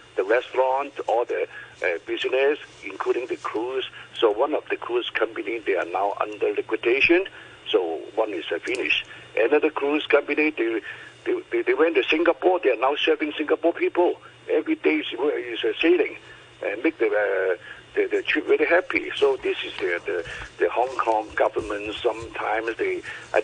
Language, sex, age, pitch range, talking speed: English, male, 60-79, 355-440 Hz, 170 wpm